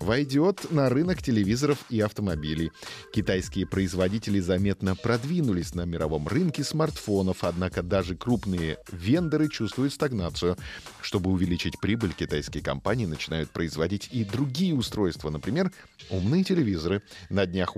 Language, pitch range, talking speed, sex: Russian, 90-125 Hz, 120 wpm, male